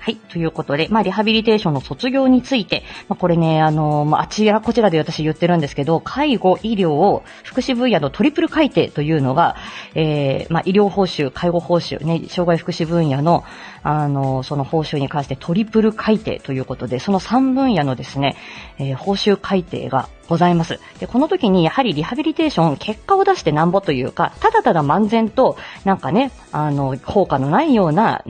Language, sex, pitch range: Japanese, female, 155-245 Hz